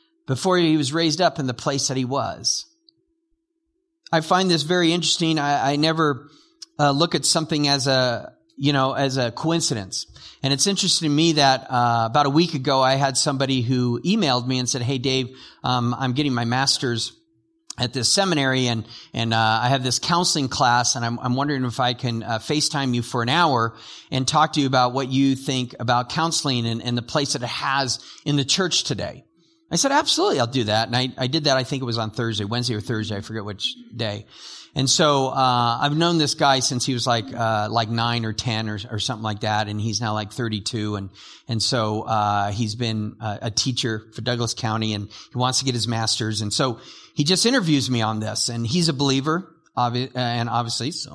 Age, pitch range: 40-59, 120-160 Hz